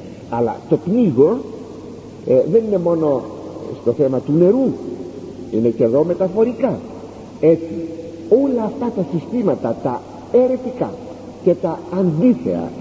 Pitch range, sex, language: 160-250 Hz, male, Greek